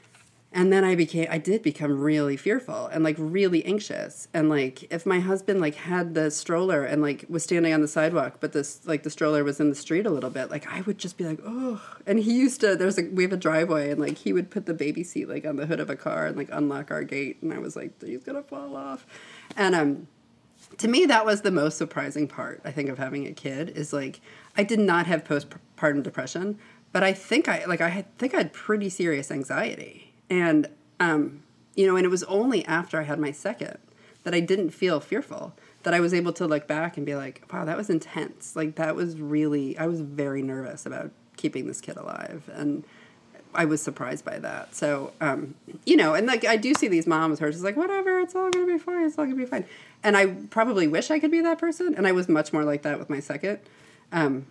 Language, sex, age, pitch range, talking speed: English, female, 30-49, 150-200 Hz, 240 wpm